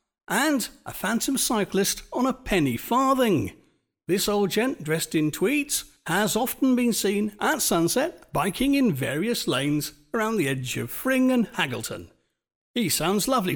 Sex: male